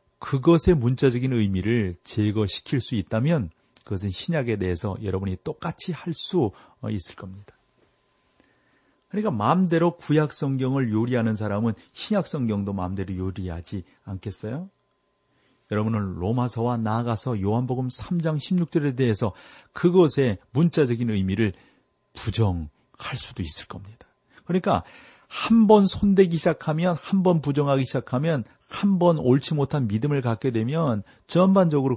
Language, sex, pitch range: Korean, male, 105-140 Hz